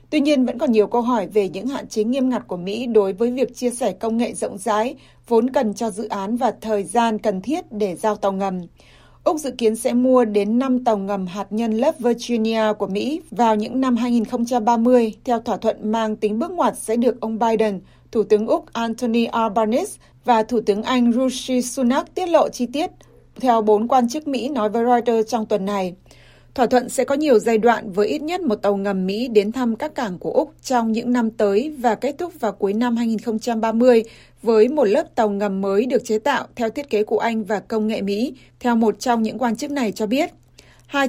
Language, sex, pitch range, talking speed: Vietnamese, female, 215-250 Hz, 225 wpm